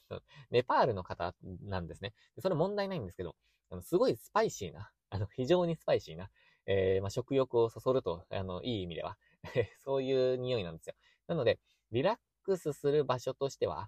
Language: Japanese